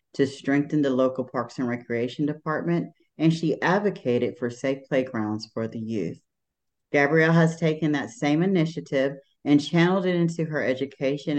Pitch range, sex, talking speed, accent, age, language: 125-155 Hz, female, 155 wpm, American, 40-59, English